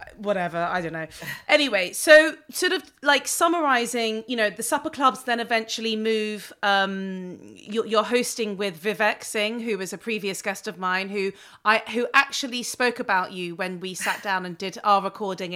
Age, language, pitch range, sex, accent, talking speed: 30-49, English, 175-230 Hz, female, British, 180 wpm